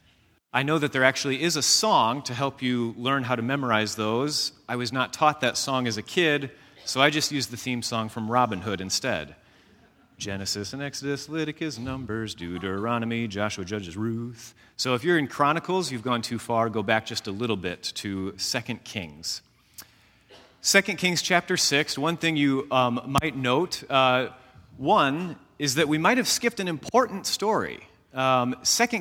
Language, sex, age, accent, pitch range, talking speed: English, male, 30-49, American, 115-155 Hz, 180 wpm